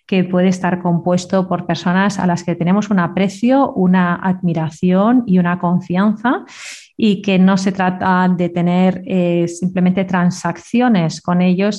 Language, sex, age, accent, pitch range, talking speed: Spanish, female, 30-49, Spanish, 180-215 Hz, 150 wpm